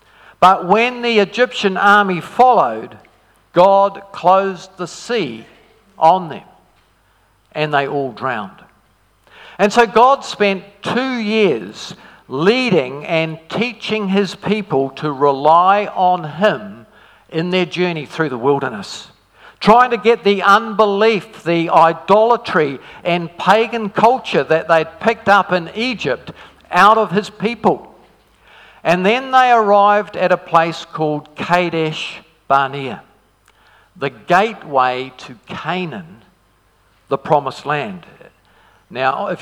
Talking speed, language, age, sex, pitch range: 115 wpm, English, 50-69, male, 160-205 Hz